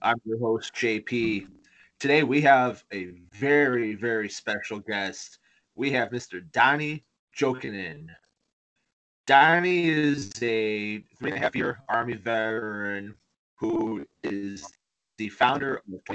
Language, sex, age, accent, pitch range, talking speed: English, male, 30-49, American, 100-125 Hz, 120 wpm